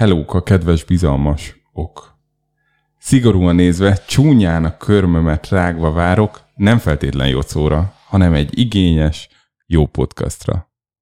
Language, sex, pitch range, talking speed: Hungarian, male, 90-125 Hz, 110 wpm